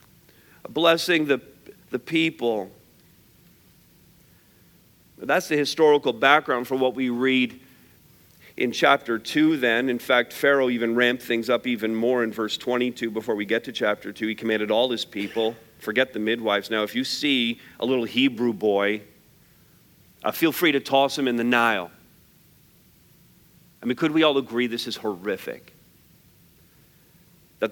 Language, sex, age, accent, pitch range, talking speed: English, male, 50-69, American, 120-165 Hz, 150 wpm